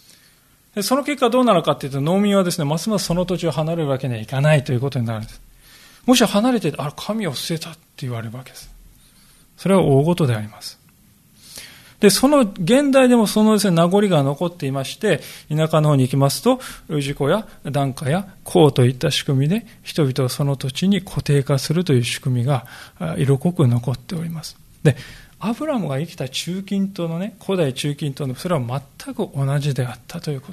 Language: Japanese